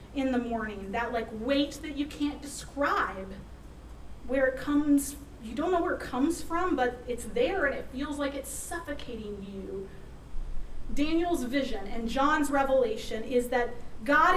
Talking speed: 160 wpm